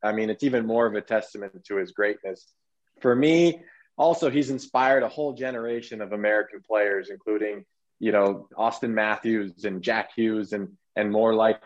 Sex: male